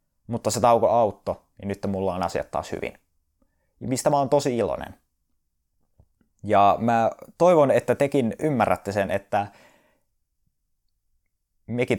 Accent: native